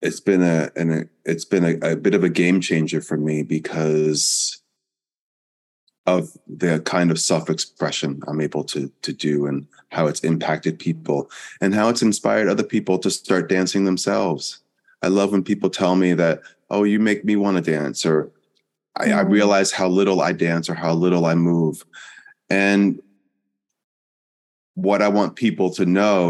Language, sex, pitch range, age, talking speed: English, male, 80-95 Hz, 20-39, 175 wpm